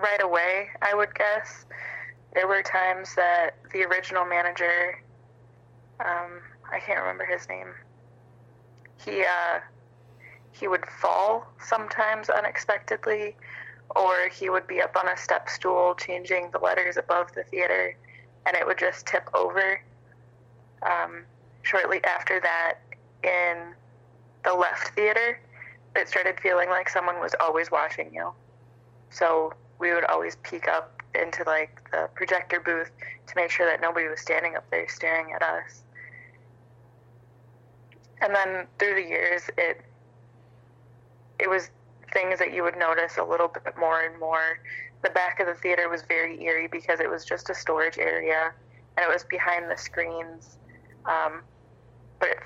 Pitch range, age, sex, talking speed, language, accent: 120-180 Hz, 20-39, female, 145 wpm, English, American